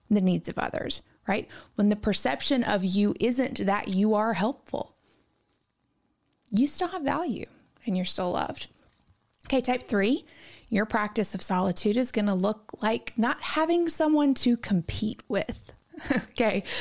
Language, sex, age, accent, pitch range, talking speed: English, female, 30-49, American, 200-255 Hz, 145 wpm